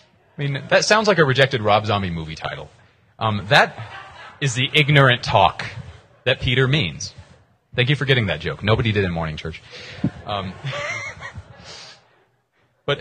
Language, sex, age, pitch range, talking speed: English, male, 30-49, 100-130 Hz, 150 wpm